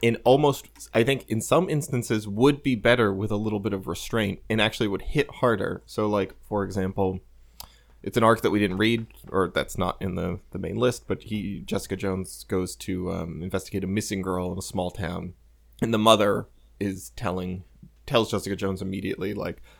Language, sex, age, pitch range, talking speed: English, male, 20-39, 95-120 Hz, 195 wpm